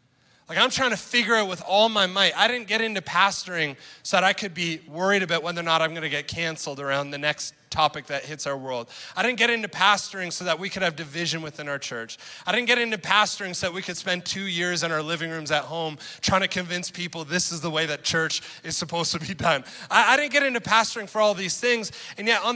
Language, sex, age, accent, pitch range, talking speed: English, male, 20-39, American, 180-235 Hz, 260 wpm